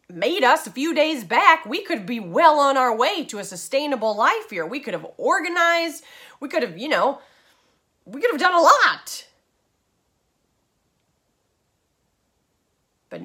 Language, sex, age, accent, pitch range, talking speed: English, female, 30-49, American, 165-250 Hz, 155 wpm